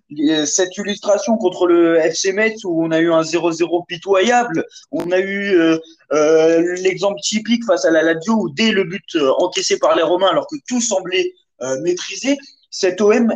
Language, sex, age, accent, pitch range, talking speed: French, male, 20-39, French, 175-235 Hz, 185 wpm